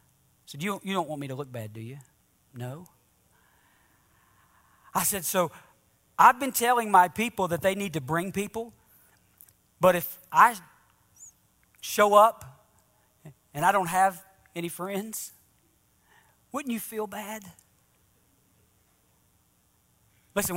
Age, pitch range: 40-59, 135-190 Hz